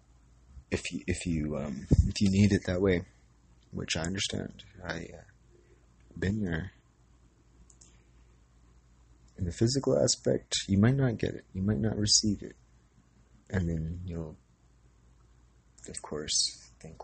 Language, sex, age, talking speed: English, male, 30-49, 135 wpm